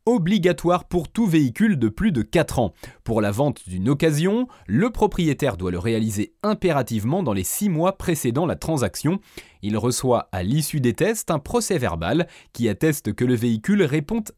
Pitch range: 130-195 Hz